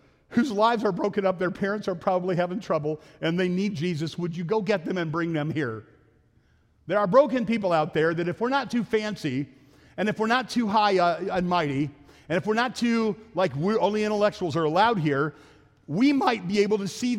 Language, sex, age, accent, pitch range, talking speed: English, male, 50-69, American, 155-215 Hz, 215 wpm